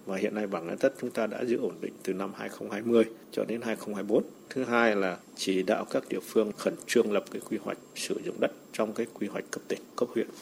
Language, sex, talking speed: Vietnamese, male, 240 wpm